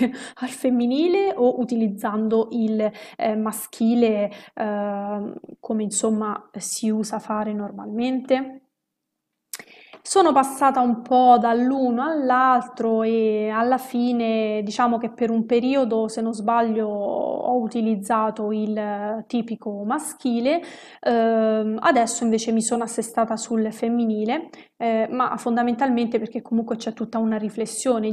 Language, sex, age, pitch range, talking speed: Italian, female, 20-39, 220-245 Hz, 110 wpm